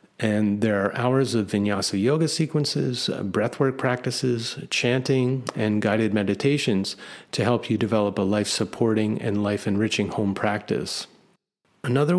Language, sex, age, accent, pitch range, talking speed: English, male, 30-49, American, 105-125 Hz, 125 wpm